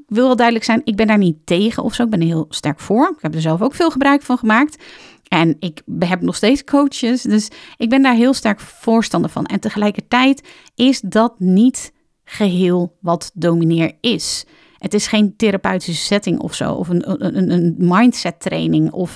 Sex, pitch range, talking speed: female, 175-240 Hz, 200 wpm